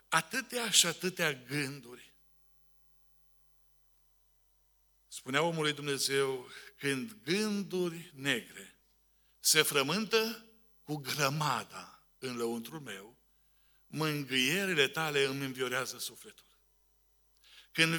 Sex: male